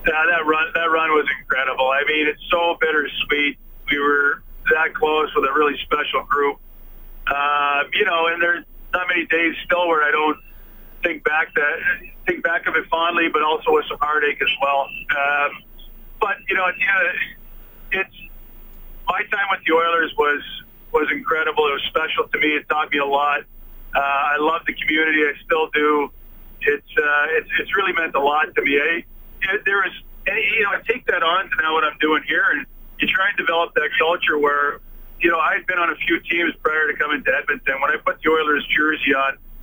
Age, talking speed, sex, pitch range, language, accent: 40-59, 200 wpm, male, 145-170 Hz, English, American